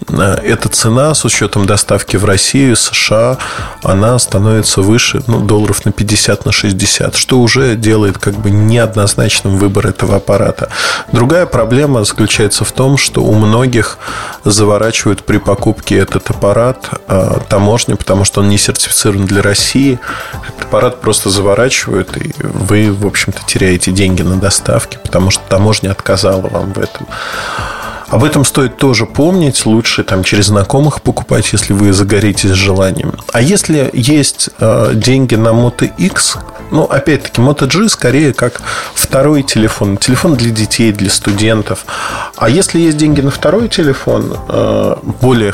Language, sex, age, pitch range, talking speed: Russian, male, 20-39, 100-125 Hz, 145 wpm